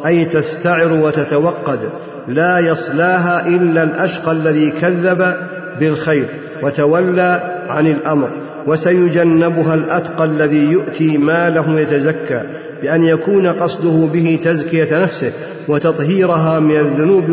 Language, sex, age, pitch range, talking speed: Arabic, male, 50-69, 150-170 Hz, 95 wpm